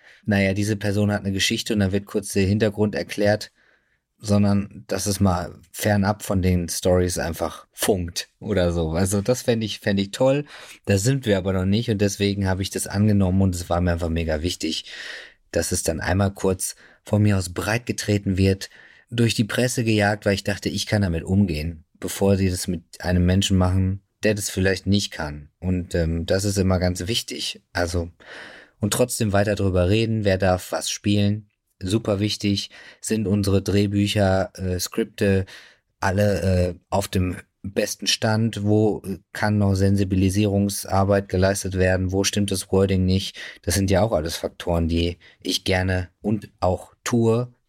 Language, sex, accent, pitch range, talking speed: German, male, German, 90-105 Hz, 175 wpm